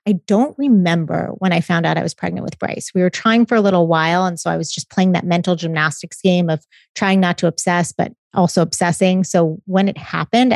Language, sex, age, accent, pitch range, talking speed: English, female, 30-49, American, 170-195 Hz, 235 wpm